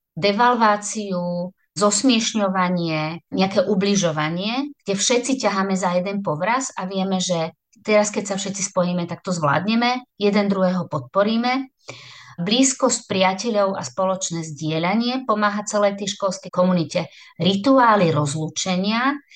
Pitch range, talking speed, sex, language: 170-205 Hz, 110 wpm, female, Slovak